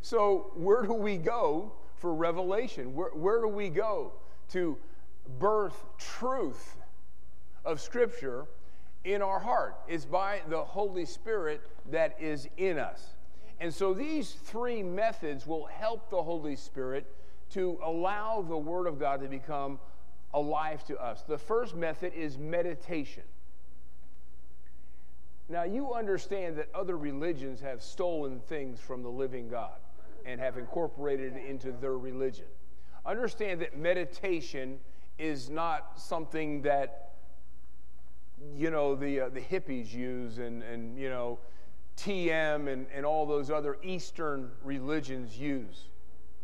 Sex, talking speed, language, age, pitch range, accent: male, 130 wpm, English, 50-69, 130-185 Hz, American